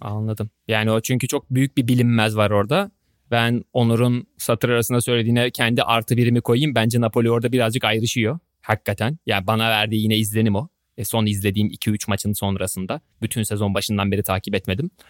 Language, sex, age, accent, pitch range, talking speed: Turkish, male, 30-49, native, 110-135 Hz, 170 wpm